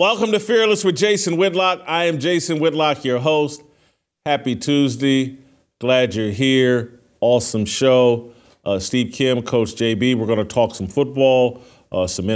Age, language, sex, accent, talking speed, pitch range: 40-59, English, male, American, 155 wpm, 110-135 Hz